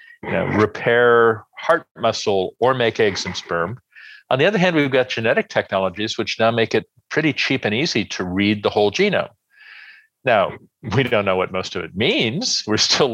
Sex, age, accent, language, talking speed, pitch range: male, 50-69, American, English, 185 wpm, 100-130 Hz